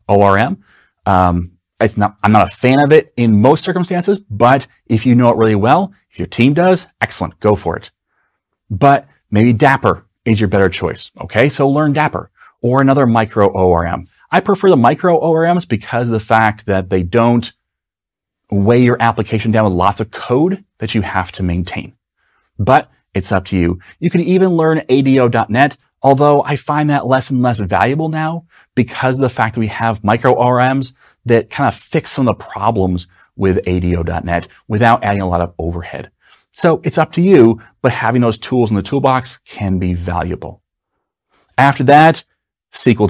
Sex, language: male, English